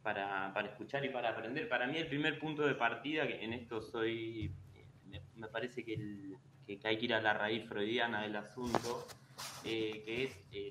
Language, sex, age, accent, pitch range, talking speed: Spanish, male, 20-39, Argentinian, 105-125 Hz, 195 wpm